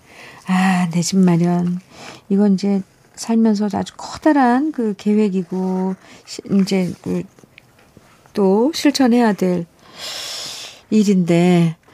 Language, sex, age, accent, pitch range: Korean, female, 50-69, native, 165-225 Hz